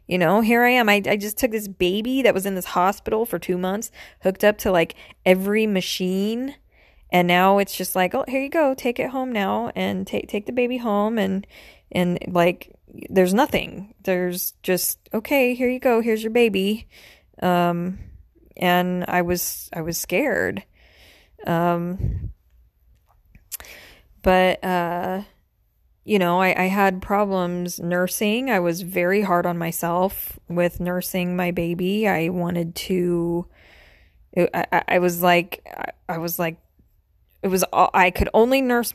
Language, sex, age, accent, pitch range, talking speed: English, female, 20-39, American, 175-205 Hz, 155 wpm